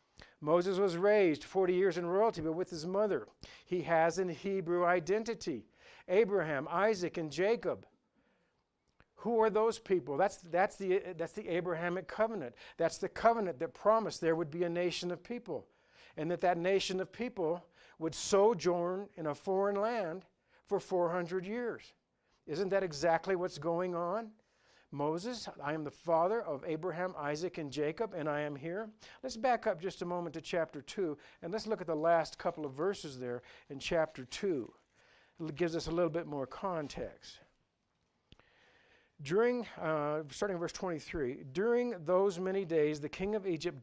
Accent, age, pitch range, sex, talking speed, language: American, 60-79, 160-205 Hz, male, 165 wpm, English